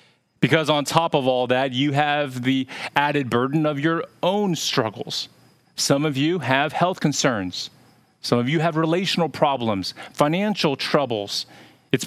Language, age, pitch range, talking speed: English, 40-59, 125-160 Hz, 150 wpm